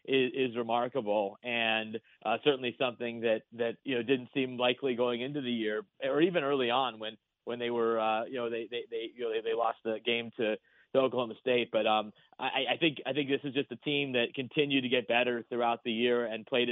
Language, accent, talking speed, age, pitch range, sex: English, American, 235 wpm, 30-49, 115-130 Hz, male